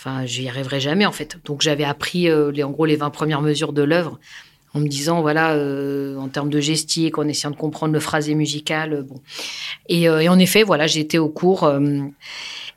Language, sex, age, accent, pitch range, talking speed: French, female, 40-59, French, 145-165 Hz, 220 wpm